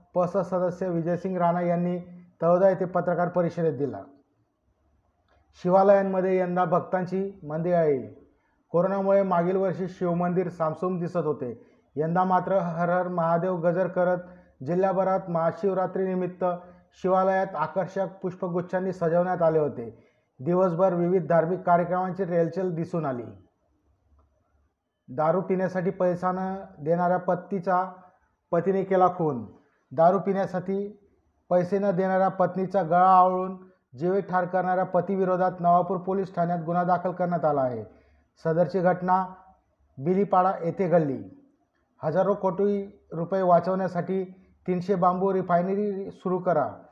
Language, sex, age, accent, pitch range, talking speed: Marathi, male, 30-49, native, 170-190 Hz, 110 wpm